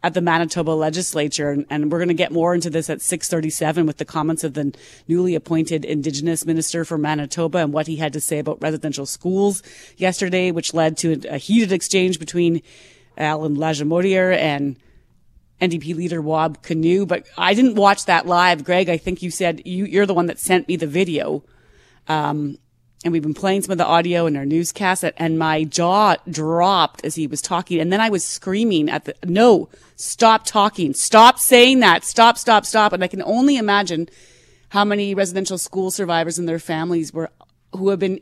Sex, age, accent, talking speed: female, 30-49, American, 195 wpm